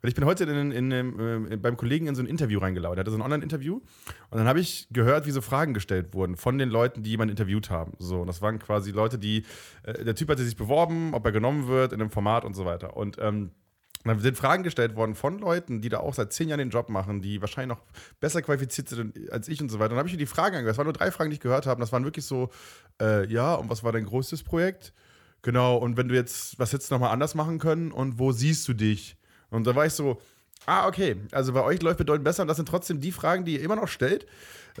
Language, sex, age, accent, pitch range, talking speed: German, male, 30-49, German, 110-150 Hz, 275 wpm